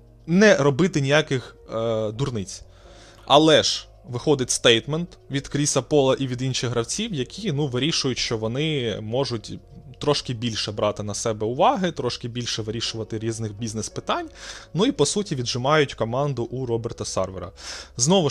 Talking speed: 140 wpm